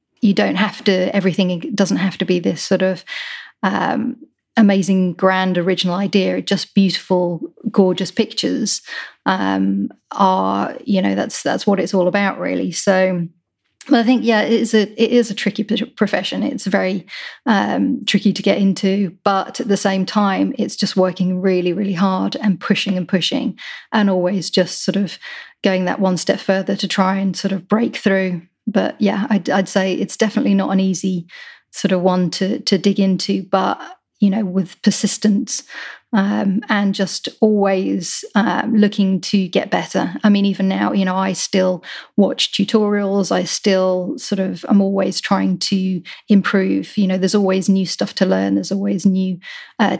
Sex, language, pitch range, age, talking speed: female, English, 185-210 Hz, 30-49, 175 wpm